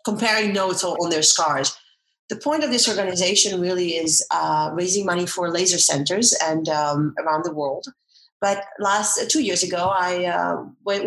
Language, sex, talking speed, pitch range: English, female, 175 wpm, 165-215 Hz